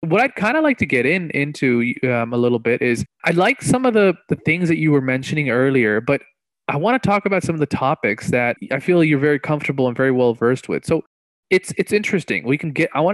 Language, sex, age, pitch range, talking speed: English, male, 20-39, 130-175 Hz, 255 wpm